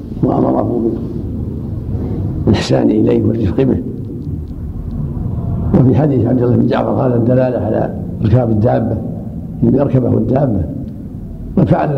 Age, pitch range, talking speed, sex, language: 70-89, 100-125 Hz, 95 wpm, male, Arabic